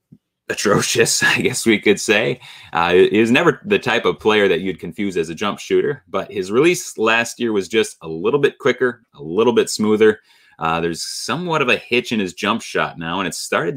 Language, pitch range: English, 95-140 Hz